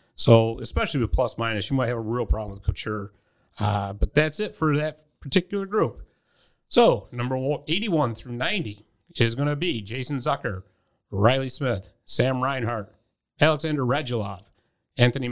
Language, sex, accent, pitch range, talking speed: English, male, American, 110-145 Hz, 150 wpm